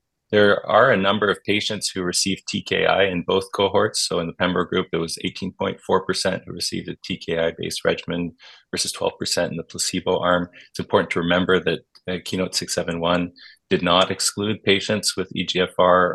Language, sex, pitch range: English, male, 85-95 Hz